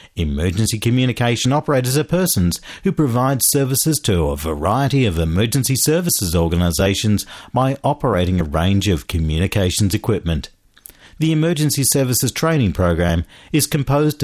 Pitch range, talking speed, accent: 85-135 Hz, 120 wpm, Australian